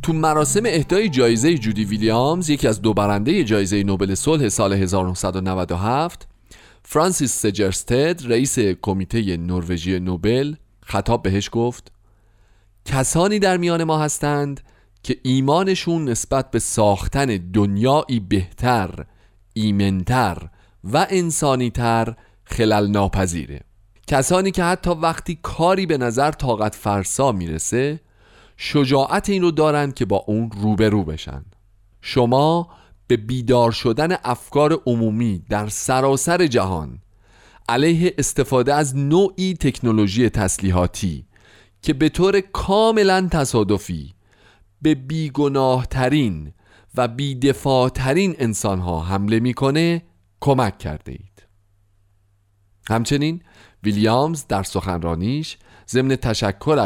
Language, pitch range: Persian, 100-145 Hz